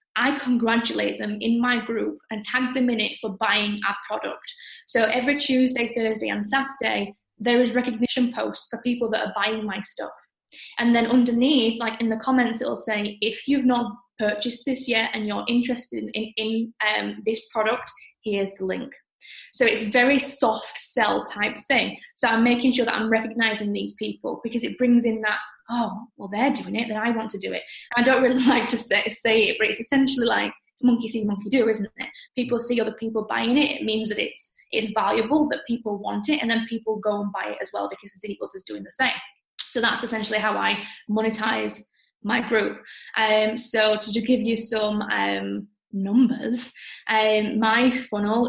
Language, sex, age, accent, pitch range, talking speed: English, female, 10-29, British, 215-245 Hz, 200 wpm